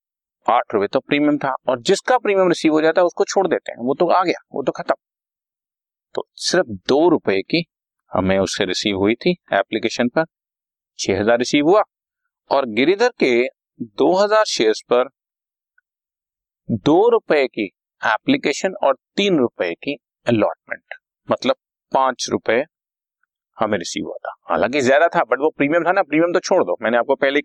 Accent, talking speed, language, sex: native, 165 wpm, Hindi, male